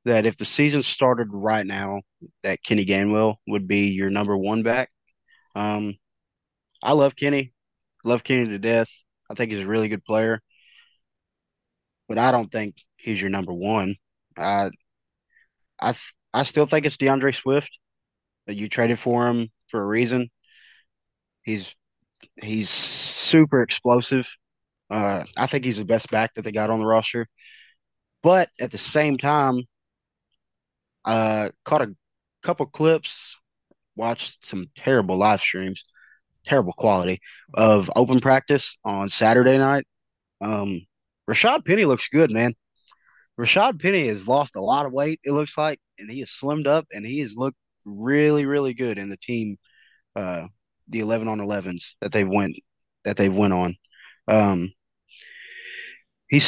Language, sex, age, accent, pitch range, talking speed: English, male, 20-39, American, 105-135 Hz, 150 wpm